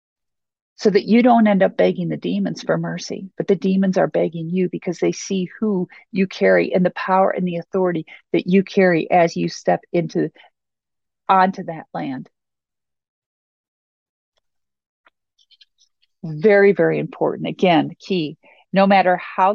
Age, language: 50-69, English